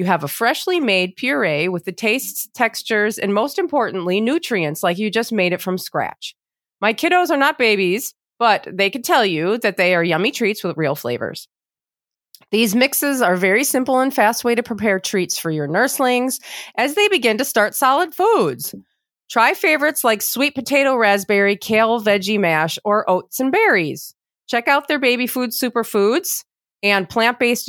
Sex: female